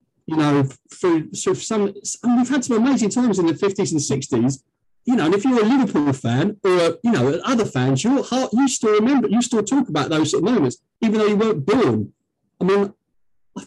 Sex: male